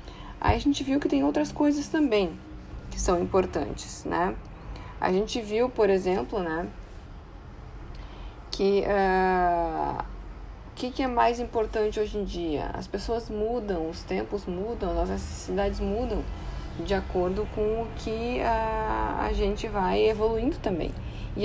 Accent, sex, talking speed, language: Brazilian, female, 145 wpm, Portuguese